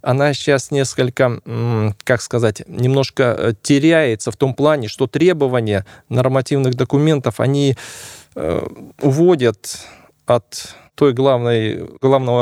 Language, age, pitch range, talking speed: Russian, 20-39, 115-145 Hz, 95 wpm